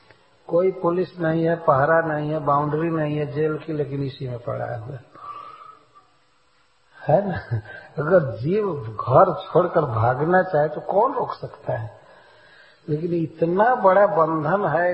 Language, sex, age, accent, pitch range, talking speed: English, male, 60-79, Indian, 145-185 Hz, 135 wpm